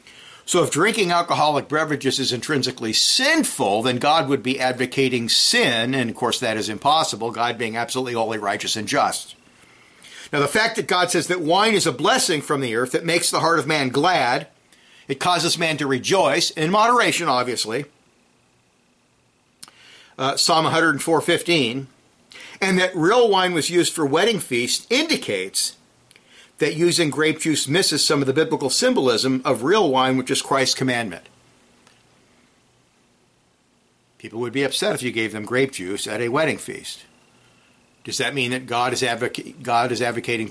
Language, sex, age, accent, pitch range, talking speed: English, male, 50-69, American, 120-160 Hz, 165 wpm